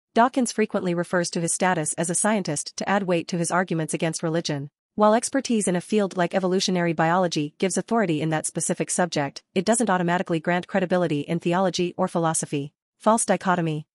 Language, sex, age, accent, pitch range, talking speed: English, female, 40-59, American, 165-200 Hz, 180 wpm